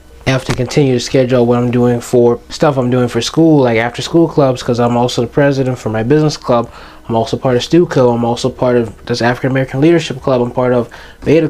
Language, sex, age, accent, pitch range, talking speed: English, male, 20-39, American, 120-150 Hz, 235 wpm